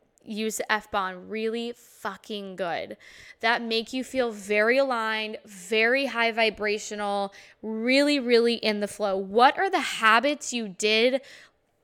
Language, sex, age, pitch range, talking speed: English, female, 10-29, 225-285 Hz, 130 wpm